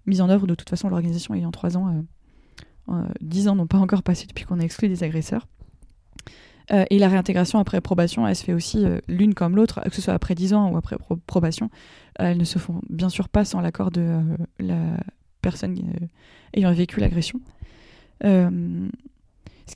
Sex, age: female, 20-39